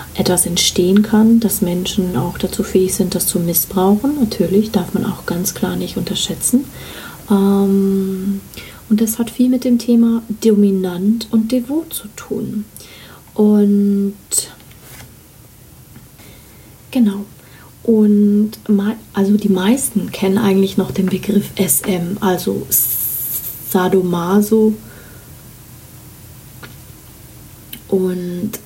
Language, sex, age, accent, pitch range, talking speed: German, female, 30-49, German, 185-225 Hz, 105 wpm